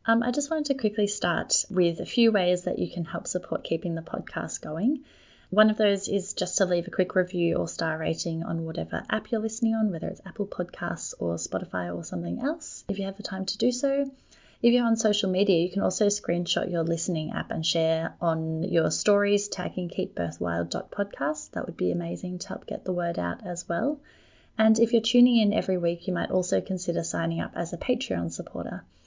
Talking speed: 215 wpm